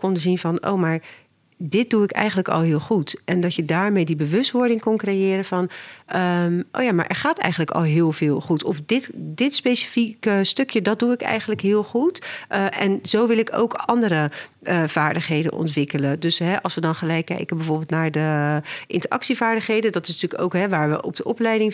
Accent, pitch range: Dutch, 160-220 Hz